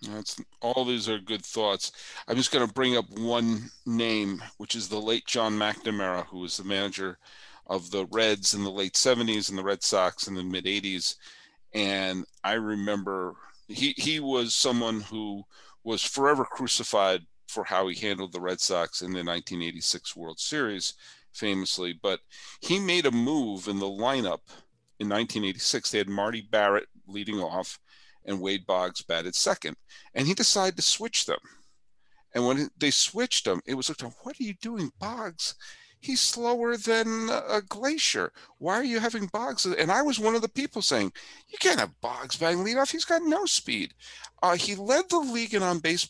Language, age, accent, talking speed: English, 40-59, American, 180 wpm